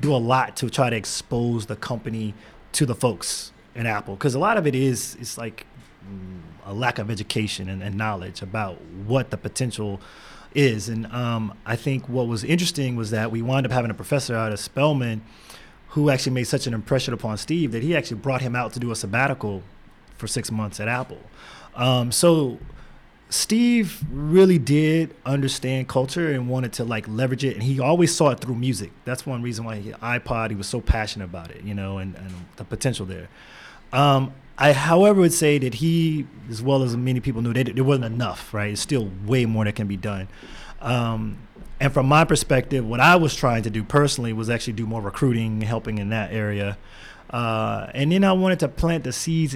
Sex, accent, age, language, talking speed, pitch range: male, American, 20-39, English, 205 wpm, 110-135 Hz